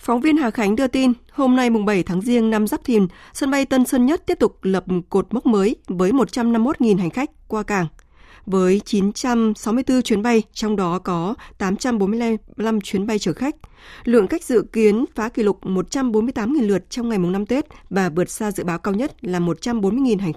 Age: 20-39